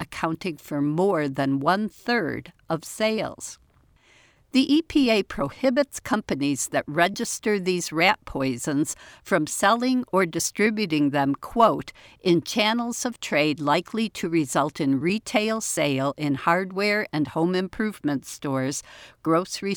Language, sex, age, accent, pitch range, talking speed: English, female, 60-79, American, 155-210 Hz, 120 wpm